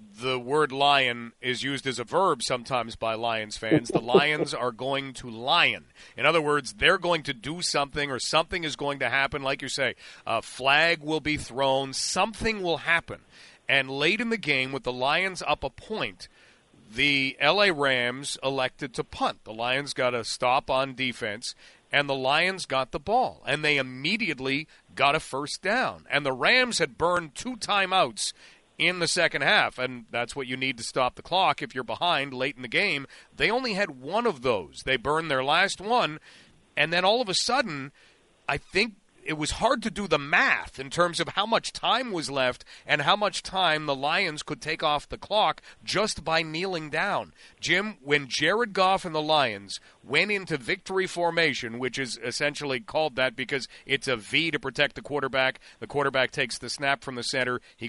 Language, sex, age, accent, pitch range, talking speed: English, male, 40-59, American, 130-160 Hz, 195 wpm